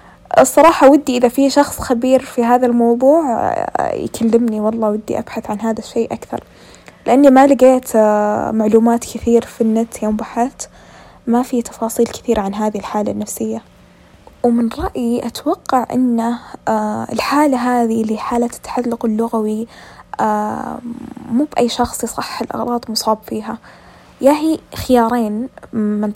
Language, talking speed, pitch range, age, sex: Arabic, 125 wpm, 215-245 Hz, 10-29, female